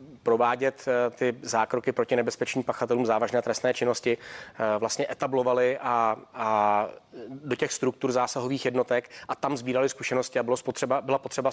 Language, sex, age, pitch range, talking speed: Czech, male, 30-49, 120-140 Hz, 140 wpm